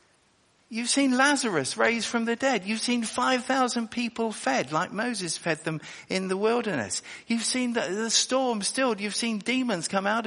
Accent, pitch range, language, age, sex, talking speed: British, 160-235 Hz, English, 50-69, male, 175 wpm